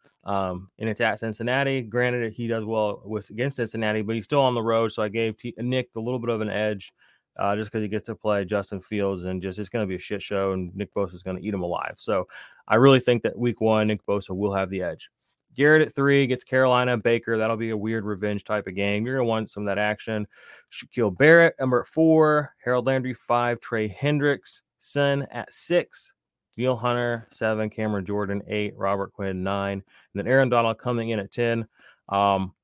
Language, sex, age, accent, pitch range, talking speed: English, male, 20-39, American, 100-120 Hz, 220 wpm